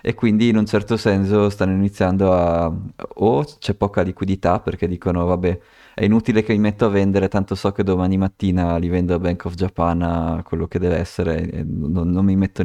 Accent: native